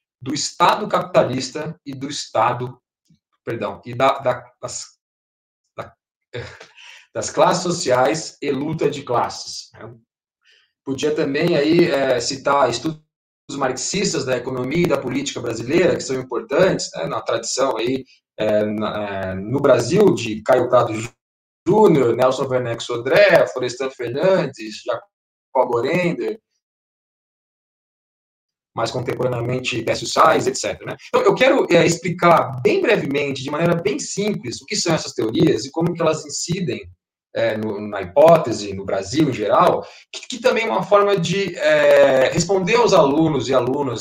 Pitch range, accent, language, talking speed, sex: 120-165 Hz, Brazilian, Portuguese, 140 wpm, male